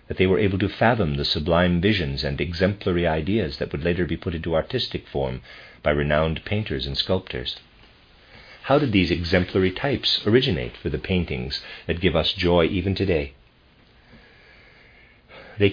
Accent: American